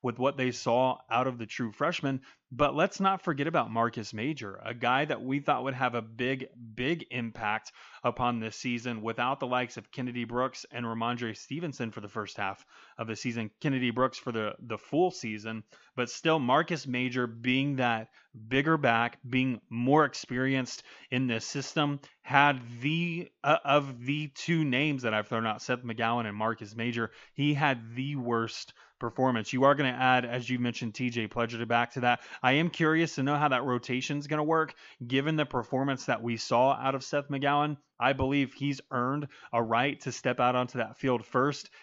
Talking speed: 195 wpm